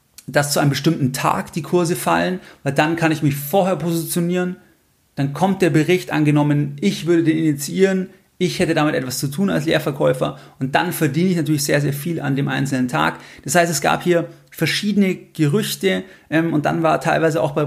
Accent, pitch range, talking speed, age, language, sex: German, 145-170 Hz, 195 wpm, 30-49, German, male